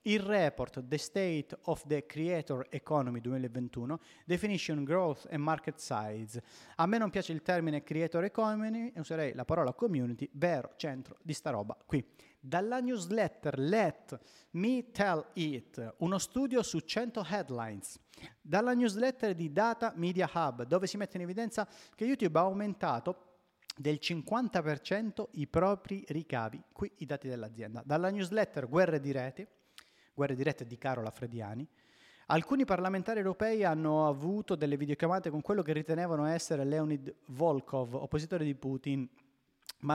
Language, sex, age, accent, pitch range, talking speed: Italian, male, 30-49, native, 135-185 Hz, 145 wpm